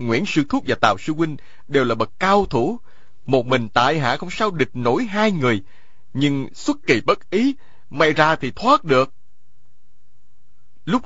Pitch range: 120-180 Hz